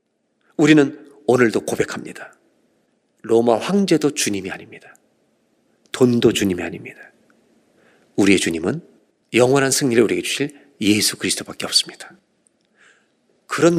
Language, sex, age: Korean, male, 40-59